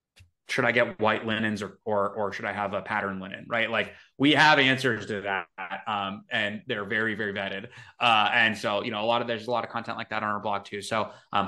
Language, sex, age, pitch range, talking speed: English, male, 30-49, 110-145 Hz, 250 wpm